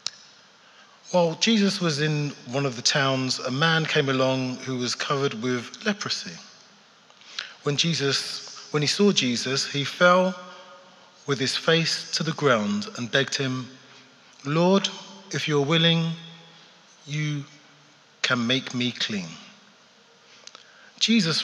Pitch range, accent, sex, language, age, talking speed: 135-180 Hz, British, male, English, 40-59, 120 wpm